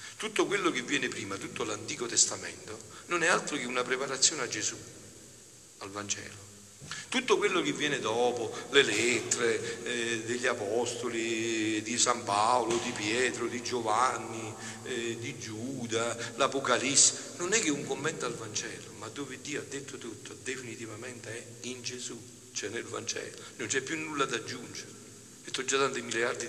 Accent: native